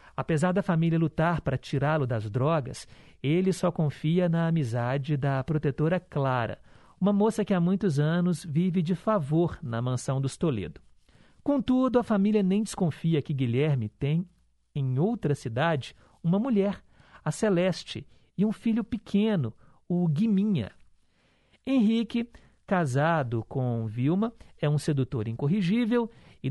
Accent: Brazilian